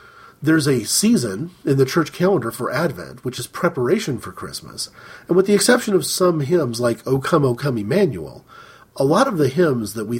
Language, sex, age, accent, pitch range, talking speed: English, male, 40-59, American, 130-175 Hz, 200 wpm